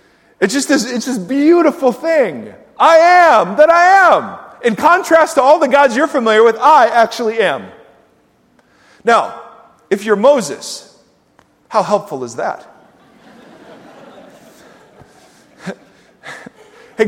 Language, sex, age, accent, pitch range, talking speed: English, male, 40-59, American, 180-265 Hz, 110 wpm